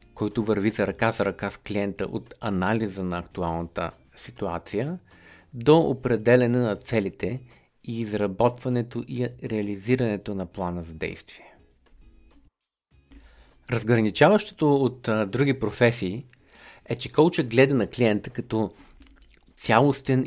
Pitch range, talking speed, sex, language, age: 100-125 Hz, 110 wpm, male, Bulgarian, 50-69